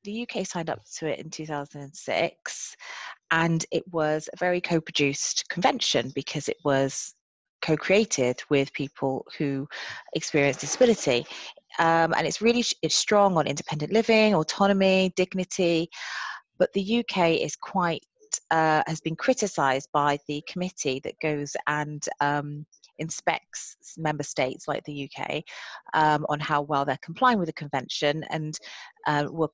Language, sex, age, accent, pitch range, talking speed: English, female, 30-49, British, 150-190 Hz, 140 wpm